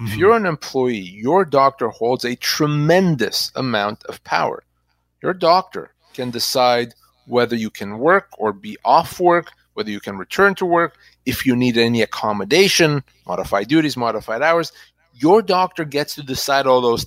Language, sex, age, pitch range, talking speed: English, male, 30-49, 115-160 Hz, 160 wpm